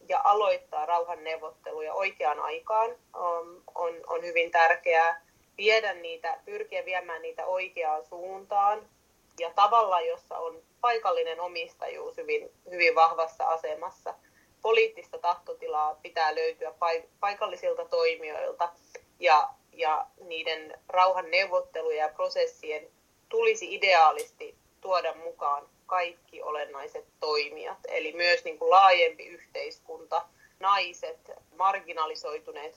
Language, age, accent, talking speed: Finnish, 30-49, native, 90 wpm